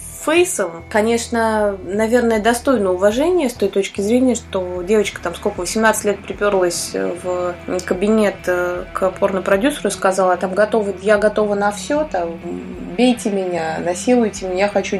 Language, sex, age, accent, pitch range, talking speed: Russian, female, 20-39, native, 180-225 Hz, 130 wpm